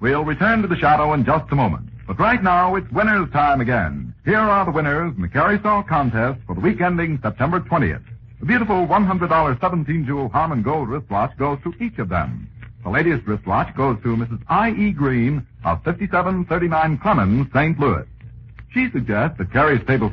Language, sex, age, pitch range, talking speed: English, male, 60-79, 115-180 Hz, 180 wpm